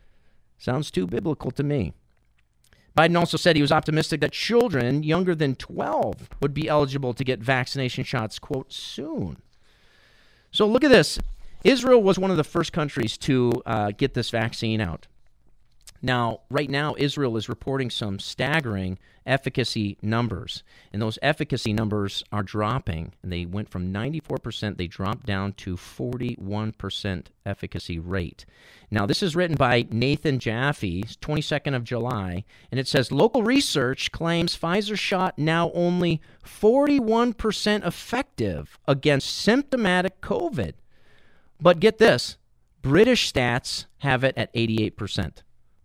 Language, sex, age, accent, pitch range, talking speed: English, male, 40-59, American, 105-155 Hz, 135 wpm